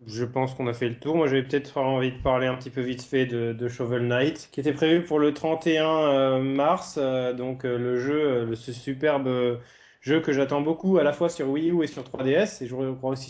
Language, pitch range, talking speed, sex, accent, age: French, 125-160 Hz, 230 wpm, male, French, 20-39